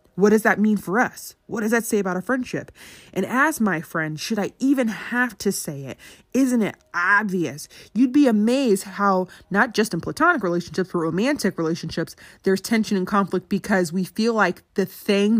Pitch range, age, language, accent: 180-215 Hz, 20-39, English, American